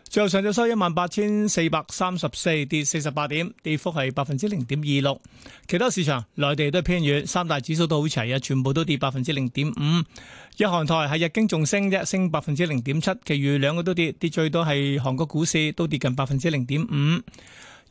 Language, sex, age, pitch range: Chinese, male, 30-49, 145-180 Hz